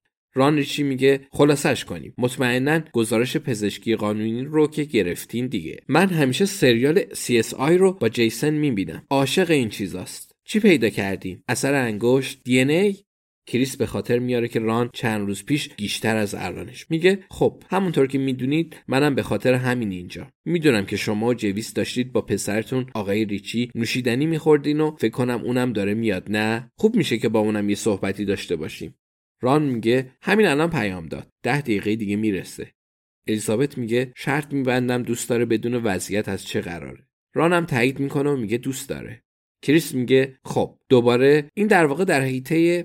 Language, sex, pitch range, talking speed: Persian, male, 105-140 Hz, 160 wpm